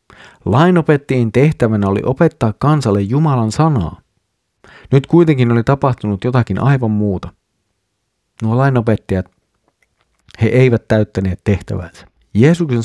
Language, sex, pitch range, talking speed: Finnish, male, 105-140 Hz, 100 wpm